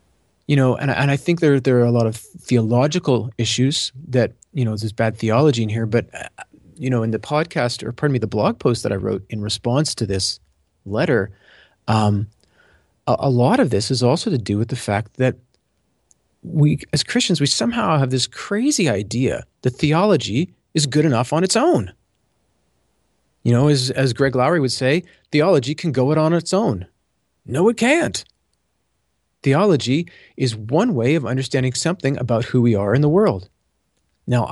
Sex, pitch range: male, 115-155 Hz